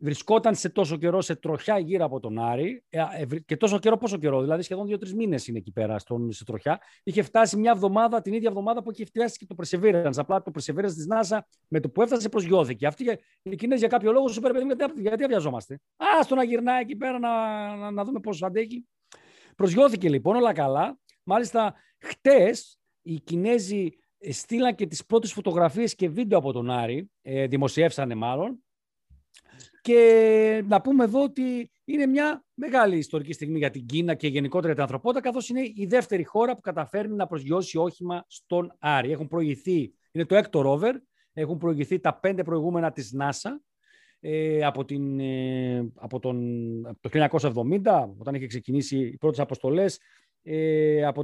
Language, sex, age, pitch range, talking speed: Greek, male, 40-59, 145-225 Hz, 165 wpm